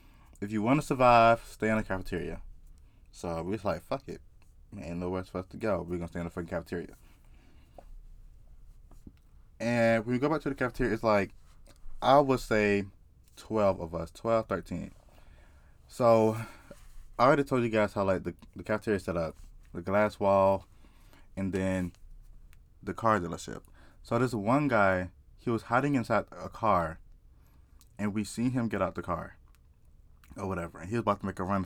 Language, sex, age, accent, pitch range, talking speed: English, male, 20-39, American, 85-110 Hz, 180 wpm